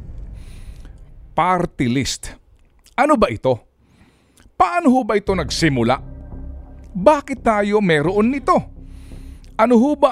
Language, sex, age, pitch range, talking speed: Filipino, male, 50-69, 120-190 Hz, 100 wpm